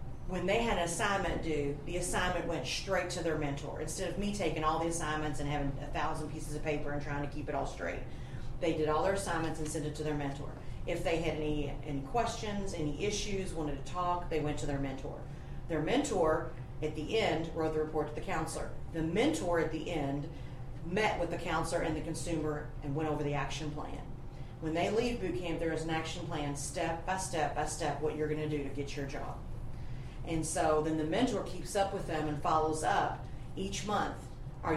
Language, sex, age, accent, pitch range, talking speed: English, female, 40-59, American, 140-165 Hz, 225 wpm